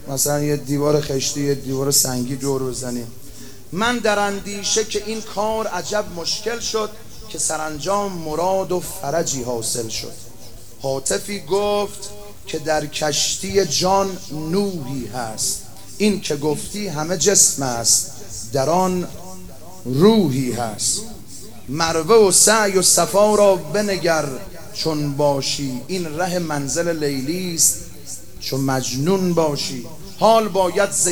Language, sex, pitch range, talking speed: Persian, male, 145-195 Hz, 120 wpm